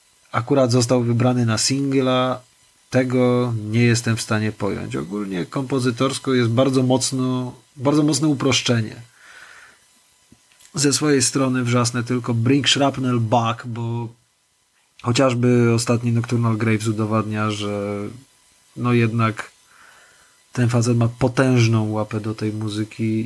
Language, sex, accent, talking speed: Polish, male, native, 115 wpm